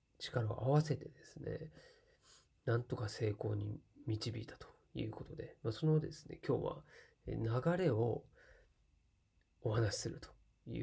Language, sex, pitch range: Japanese, male, 115-155 Hz